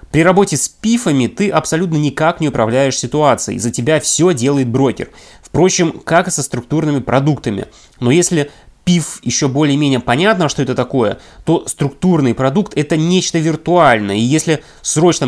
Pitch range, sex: 130-180 Hz, male